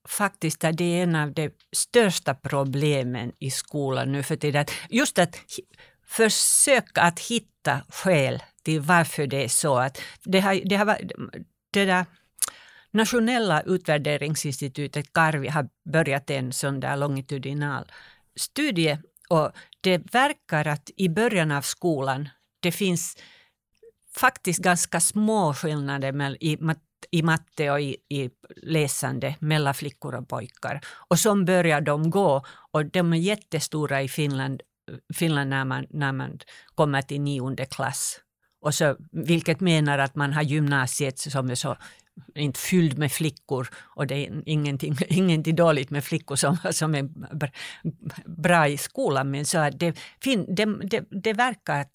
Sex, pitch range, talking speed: female, 140-180 Hz, 145 wpm